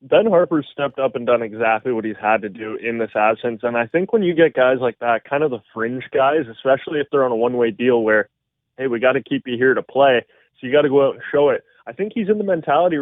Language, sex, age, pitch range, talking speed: English, male, 20-39, 125-160 Hz, 280 wpm